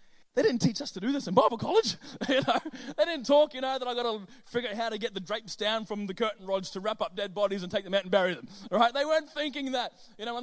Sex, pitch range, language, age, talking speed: male, 200-265 Hz, English, 20-39, 305 wpm